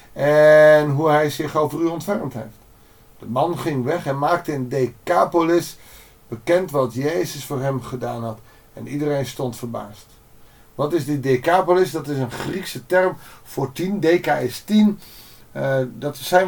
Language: Dutch